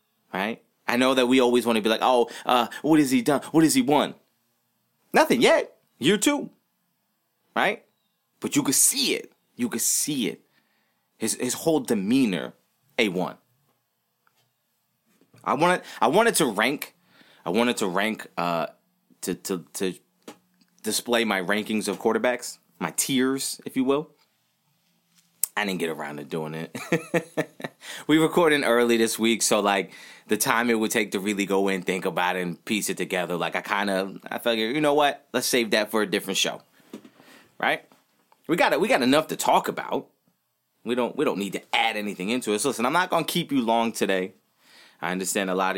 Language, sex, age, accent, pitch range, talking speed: English, male, 30-49, American, 95-140 Hz, 185 wpm